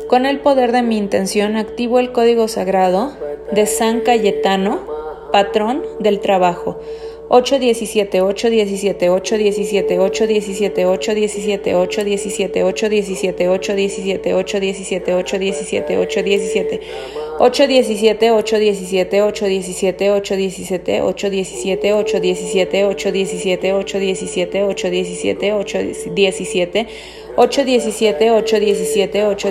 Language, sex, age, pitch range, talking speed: Spanish, female, 30-49, 195-220 Hz, 45 wpm